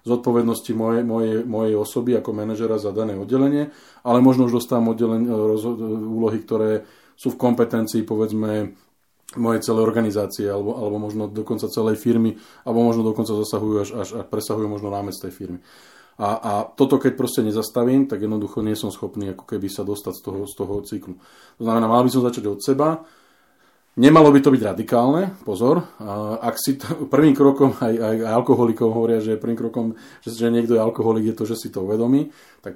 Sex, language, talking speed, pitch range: male, Slovak, 185 wpm, 105-120 Hz